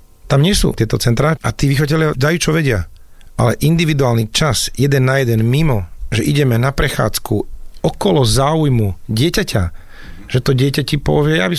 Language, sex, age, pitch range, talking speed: Slovak, male, 40-59, 115-145 Hz, 165 wpm